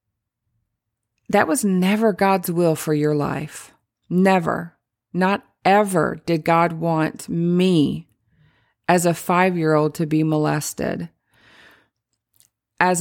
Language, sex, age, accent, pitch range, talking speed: English, female, 40-59, American, 150-185 Hz, 100 wpm